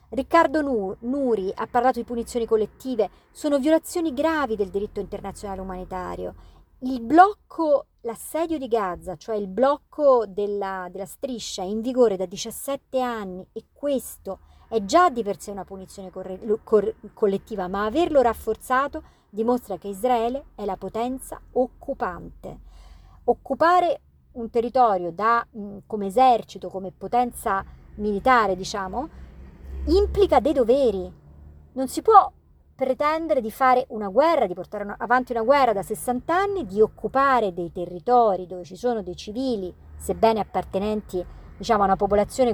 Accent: native